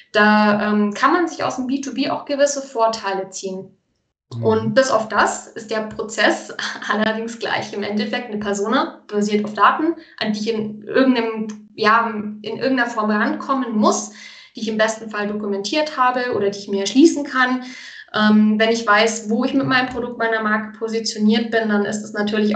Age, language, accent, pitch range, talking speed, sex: 20-39, German, German, 210-245 Hz, 185 wpm, female